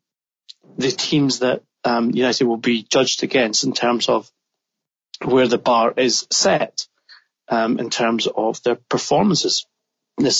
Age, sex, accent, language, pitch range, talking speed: 30-49, male, British, English, 110-130 Hz, 140 wpm